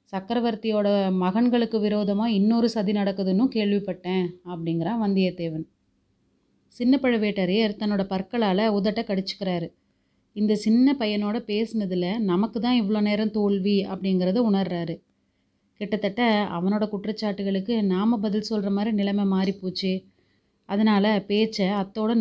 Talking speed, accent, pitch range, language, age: 105 wpm, native, 190-225 Hz, Tamil, 30-49